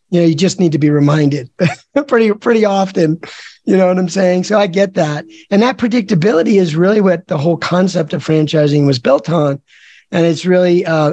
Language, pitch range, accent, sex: English, 155-185 Hz, American, male